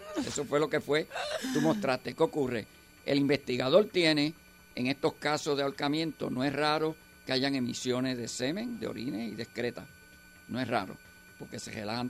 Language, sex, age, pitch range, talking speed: Spanish, male, 50-69, 125-170 Hz, 180 wpm